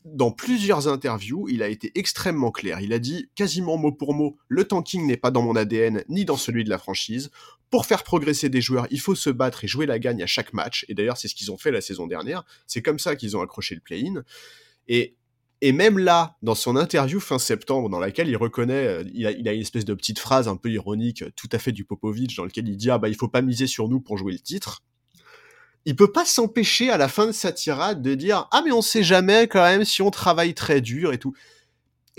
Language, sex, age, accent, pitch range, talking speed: French, male, 30-49, French, 115-160 Hz, 265 wpm